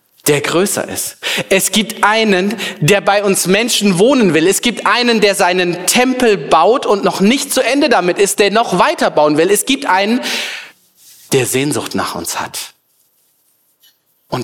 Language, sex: German, male